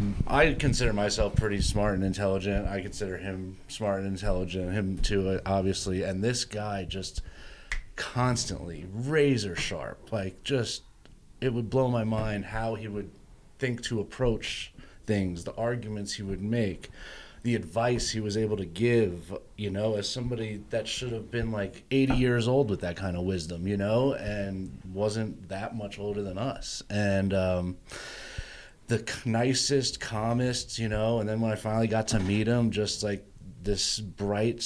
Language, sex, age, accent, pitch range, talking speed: English, male, 30-49, American, 95-115 Hz, 165 wpm